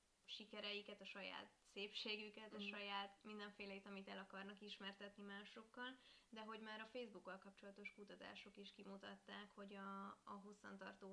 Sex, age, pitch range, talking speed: female, 20-39, 195-210 Hz, 135 wpm